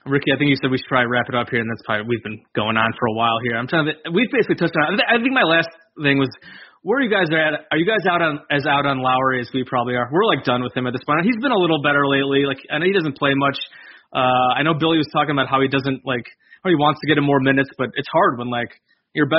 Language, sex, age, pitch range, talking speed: English, male, 20-39, 130-155 Hz, 315 wpm